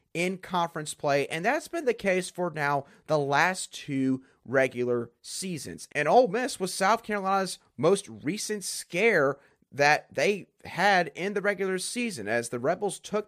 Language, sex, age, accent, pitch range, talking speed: English, male, 30-49, American, 145-195 Hz, 160 wpm